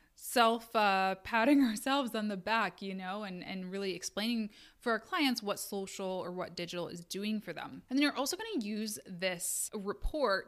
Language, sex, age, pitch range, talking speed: English, female, 20-39, 185-235 Hz, 195 wpm